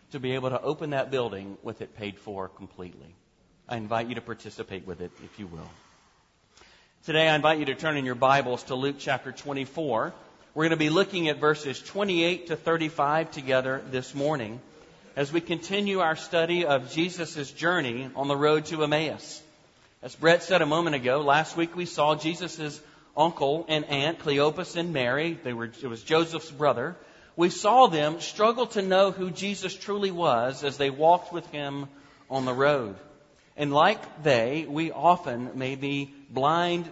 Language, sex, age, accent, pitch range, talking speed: English, male, 40-59, American, 120-160 Hz, 180 wpm